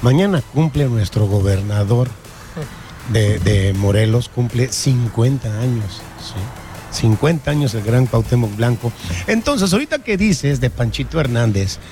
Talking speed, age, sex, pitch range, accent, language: 120 wpm, 50-69, male, 105-140 Hz, Mexican, English